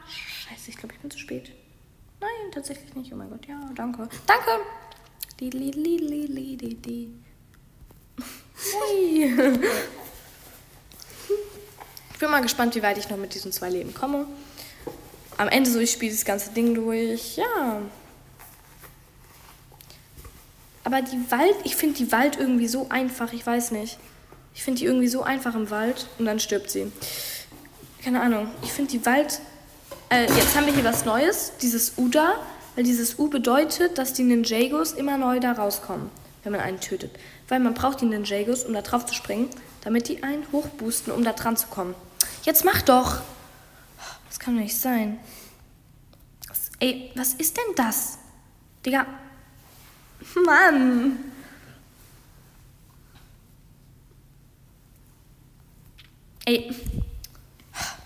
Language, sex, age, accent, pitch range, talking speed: German, female, 20-39, German, 205-280 Hz, 135 wpm